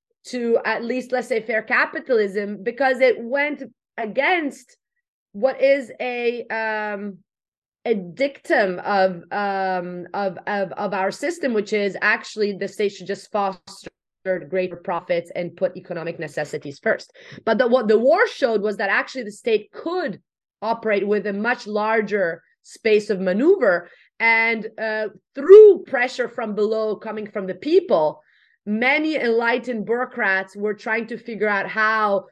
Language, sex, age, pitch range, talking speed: English, female, 30-49, 205-255 Hz, 145 wpm